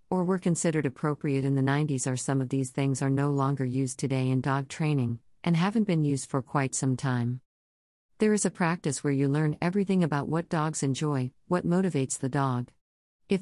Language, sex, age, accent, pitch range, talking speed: English, female, 50-69, American, 130-170 Hz, 200 wpm